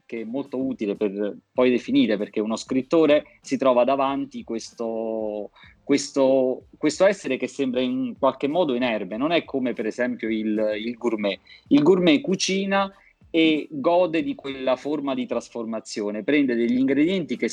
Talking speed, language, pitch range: 145 wpm, Italian, 115-170 Hz